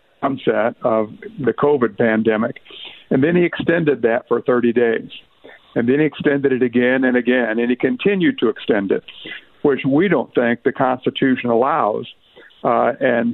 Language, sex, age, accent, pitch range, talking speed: English, male, 60-79, American, 120-140 Hz, 160 wpm